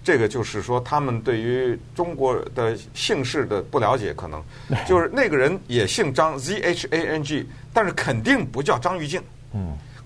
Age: 50-69